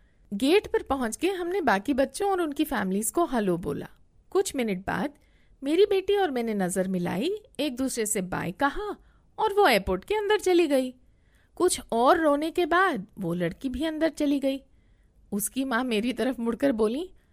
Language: Hindi